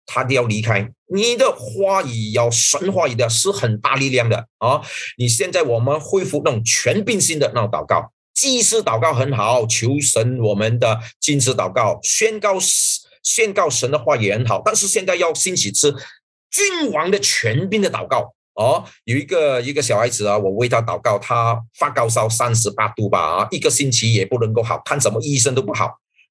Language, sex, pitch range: English, male, 115-195 Hz